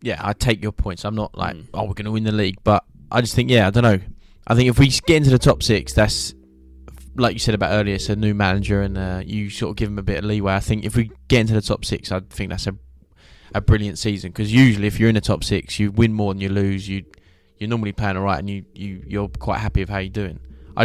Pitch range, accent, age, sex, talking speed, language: 95-110 Hz, British, 10-29, male, 295 wpm, English